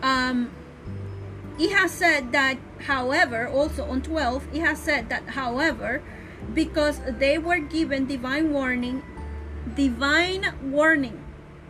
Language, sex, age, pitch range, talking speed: English, female, 30-49, 260-320 Hz, 115 wpm